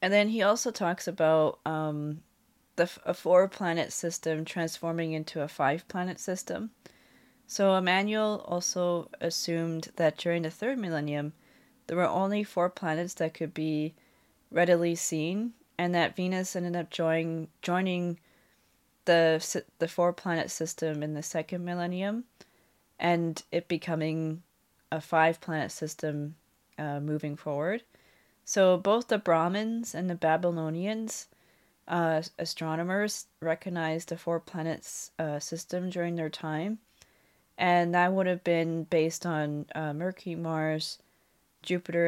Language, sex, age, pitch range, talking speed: English, female, 20-39, 160-180 Hz, 125 wpm